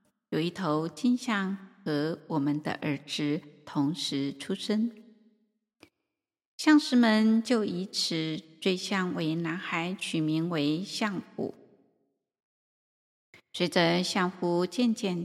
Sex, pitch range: female, 170-235 Hz